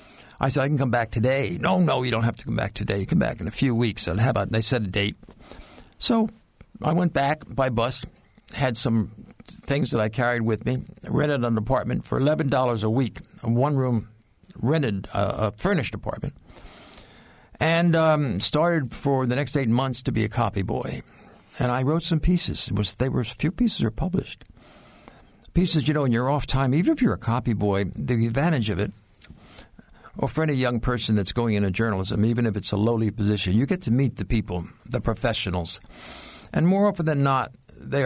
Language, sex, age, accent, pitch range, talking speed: English, male, 60-79, American, 110-135 Hz, 210 wpm